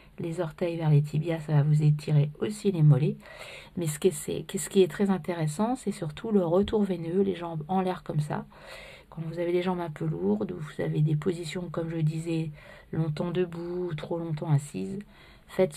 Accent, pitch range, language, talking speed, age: French, 155-185 Hz, French, 205 wpm, 50-69